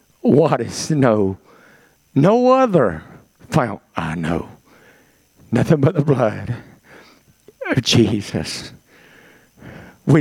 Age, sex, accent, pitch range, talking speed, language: 50-69, male, American, 110-150 Hz, 90 wpm, English